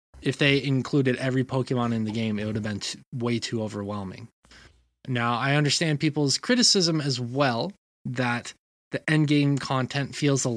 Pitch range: 115-150 Hz